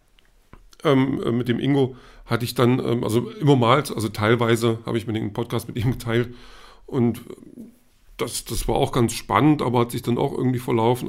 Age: 50-69